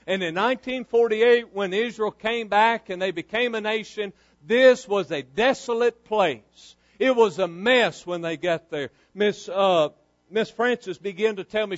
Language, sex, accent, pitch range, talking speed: English, male, American, 180-230 Hz, 170 wpm